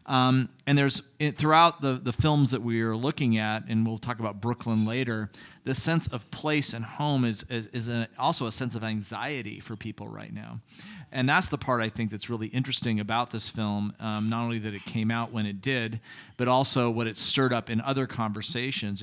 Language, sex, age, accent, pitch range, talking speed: English, male, 40-59, American, 110-140 Hz, 210 wpm